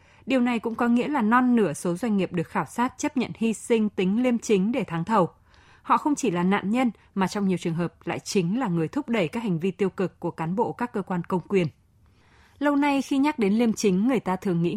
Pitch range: 175-235 Hz